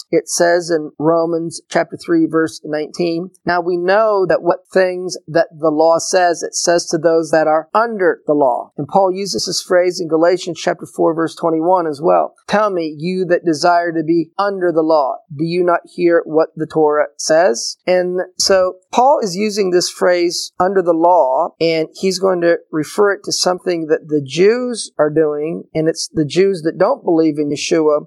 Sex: male